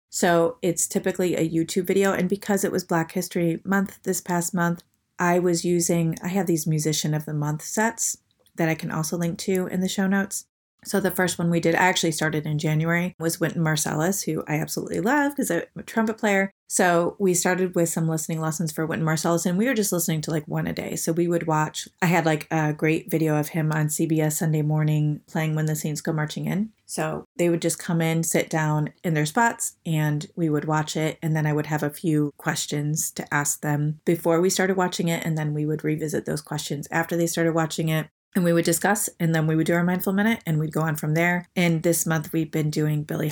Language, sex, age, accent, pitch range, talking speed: English, female, 30-49, American, 155-180 Hz, 240 wpm